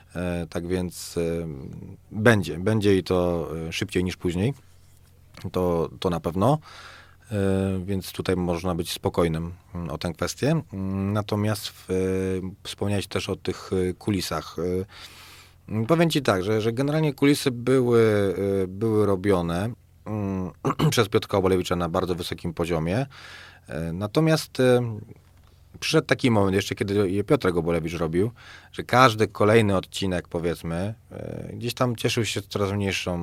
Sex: male